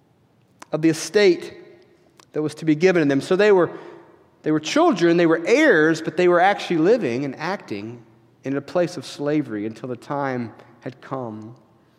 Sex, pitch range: male, 165-215 Hz